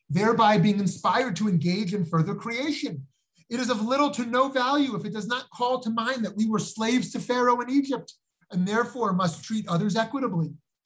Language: English